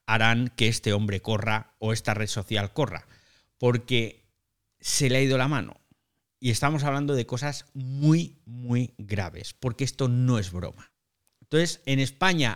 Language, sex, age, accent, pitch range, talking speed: Spanish, male, 50-69, Spanish, 110-145 Hz, 160 wpm